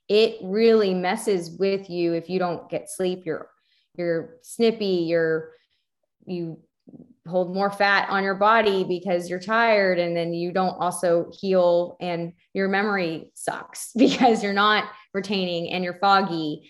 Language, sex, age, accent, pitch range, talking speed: English, female, 20-39, American, 175-215 Hz, 145 wpm